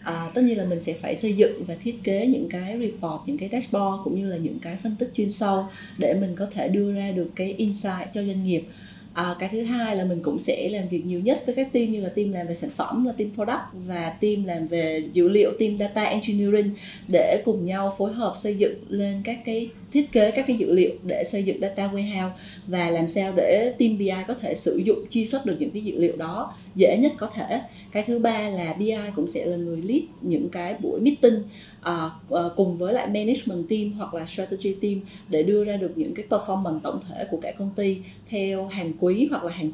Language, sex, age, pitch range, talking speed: Vietnamese, female, 20-39, 180-220 Hz, 235 wpm